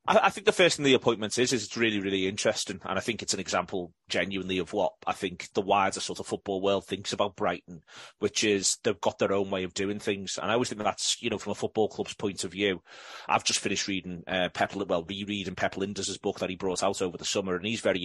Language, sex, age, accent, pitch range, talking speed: English, male, 30-49, British, 95-110 Hz, 265 wpm